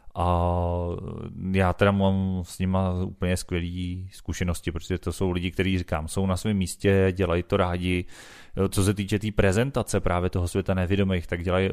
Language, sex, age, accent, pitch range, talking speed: Czech, male, 30-49, native, 85-95 Hz, 175 wpm